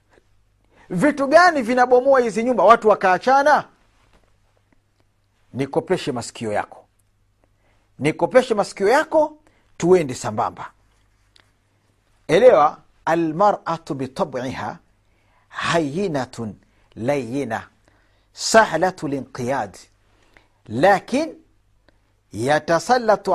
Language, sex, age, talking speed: Swahili, male, 50-69, 65 wpm